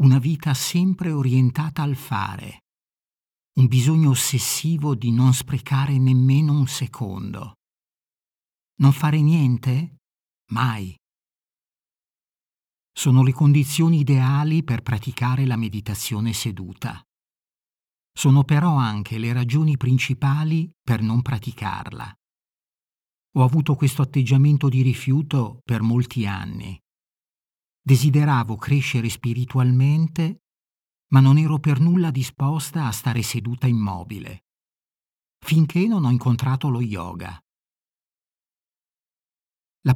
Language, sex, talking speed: Italian, male, 100 wpm